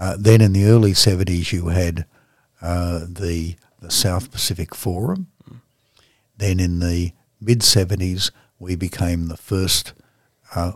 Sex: male